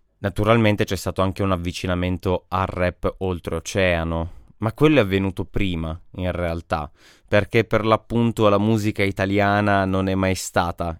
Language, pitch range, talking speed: Italian, 85-105 Hz, 140 wpm